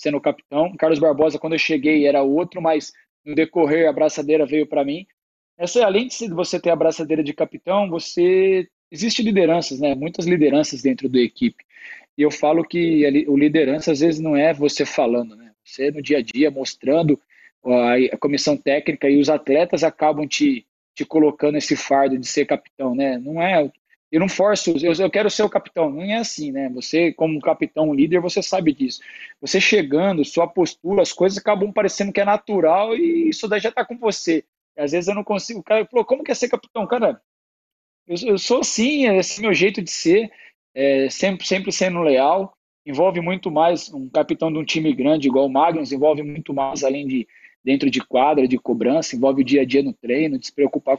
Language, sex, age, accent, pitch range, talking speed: Portuguese, male, 20-39, Brazilian, 145-205 Hz, 200 wpm